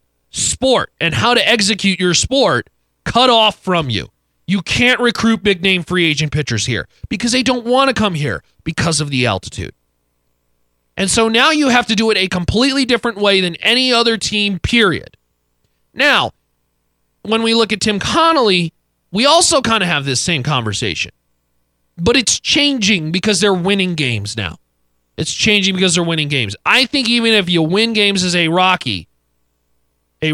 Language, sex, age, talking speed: English, male, 30-49, 170 wpm